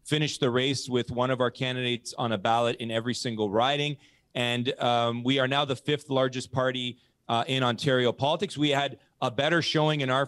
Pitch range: 115-135 Hz